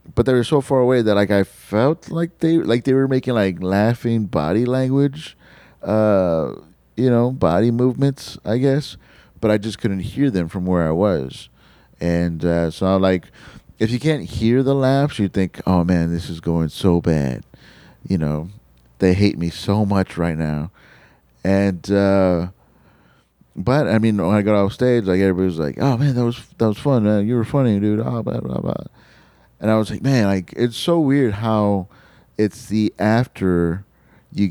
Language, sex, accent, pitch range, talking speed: English, male, American, 85-120 Hz, 190 wpm